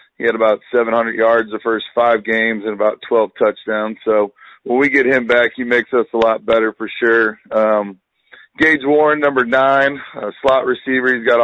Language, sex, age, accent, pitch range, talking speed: English, male, 30-49, American, 110-125 Hz, 195 wpm